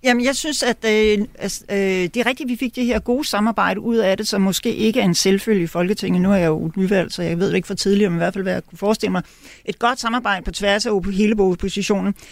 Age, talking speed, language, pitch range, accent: 40-59, 270 wpm, Danish, 175-225 Hz, native